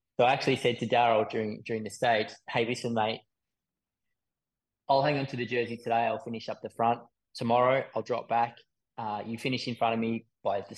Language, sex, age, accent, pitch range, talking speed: English, male, 20-39, Australian, 110-135 Hz, 205 wpm